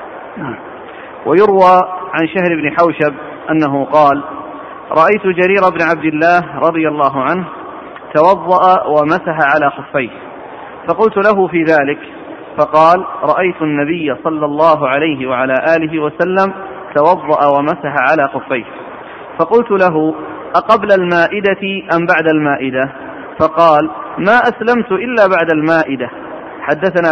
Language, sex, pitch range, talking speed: Arabic, male, 150-185 Hz, 110 wpm